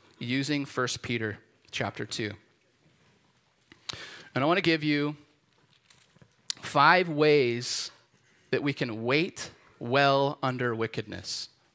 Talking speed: 95 wpm